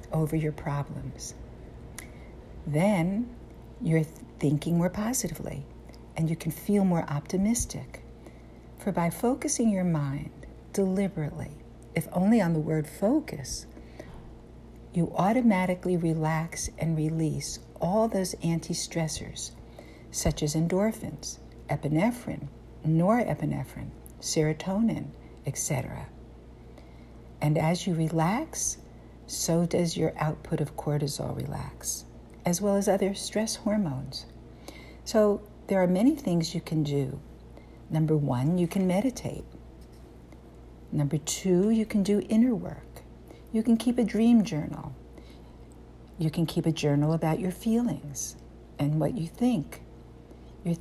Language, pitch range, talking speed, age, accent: English, 145-190 Hz, 115 wpm, 60-79, American